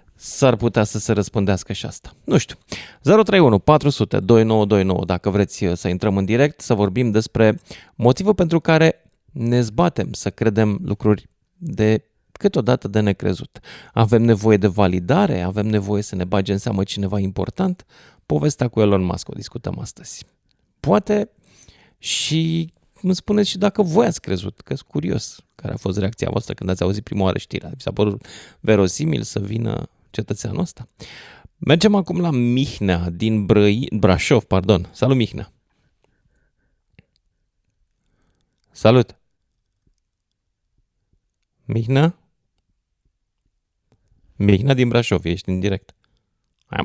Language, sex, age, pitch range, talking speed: Romanian, male, 30-49, 95-135 Hz, 130 wpm